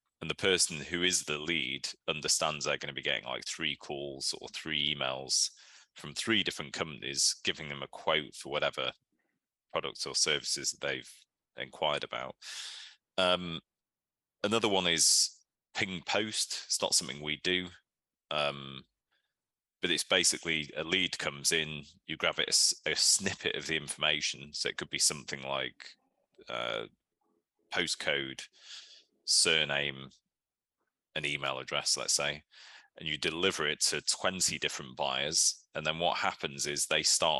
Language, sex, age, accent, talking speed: English, male, 30-49, British, 150 wpm